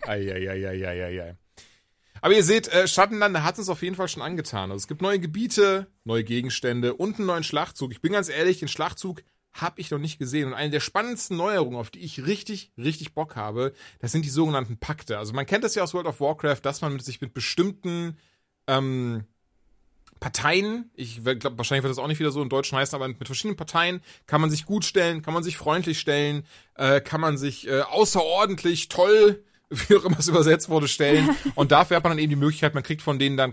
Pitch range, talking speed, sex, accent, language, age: 130-170 Hz, 225 wpm, male, German, German, 30-49